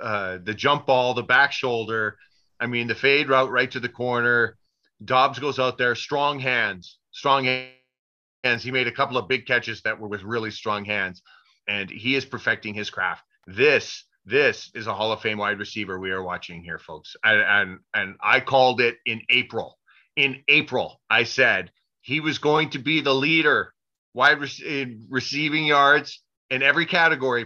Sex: male